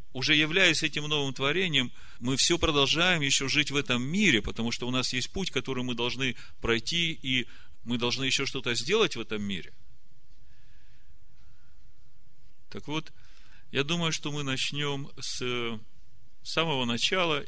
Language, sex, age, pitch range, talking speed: Russian, male, 40-59, 110-140 Hz, 145 wpm